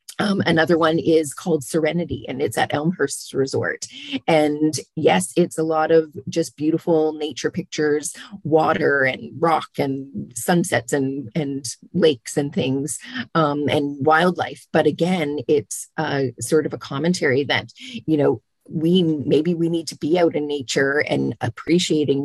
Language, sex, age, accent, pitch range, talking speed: English, female, 30-49, American, 145-175 Hz, 150 wpm